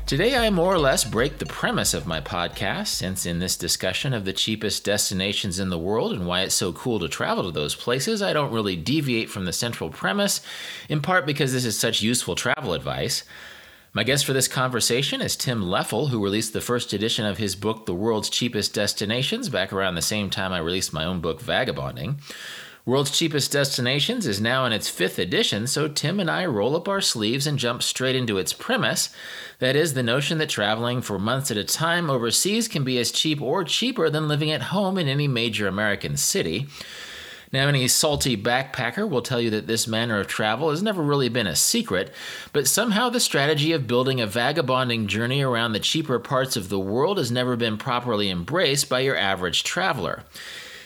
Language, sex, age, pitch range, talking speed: English, male, 30-49, 105-145 Hz, 205 wpm